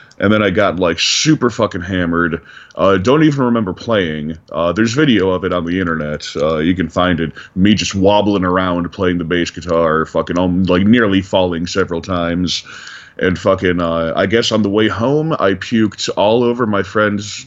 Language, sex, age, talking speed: English, male, 30-49, 190 wpm